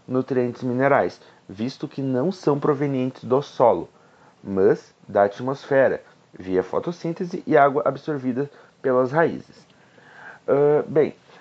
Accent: Brazilian